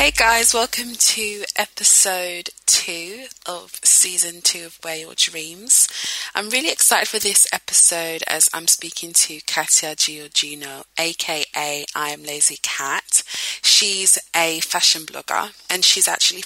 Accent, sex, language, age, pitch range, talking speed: British, female, English, 20-39, 165-210 Hz, 135 wpm